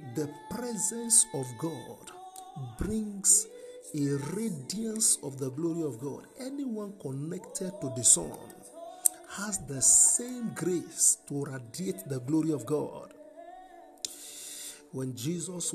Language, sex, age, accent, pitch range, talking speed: English, male, 50-69, Nigerian, 145-220 Hz, 110 wpm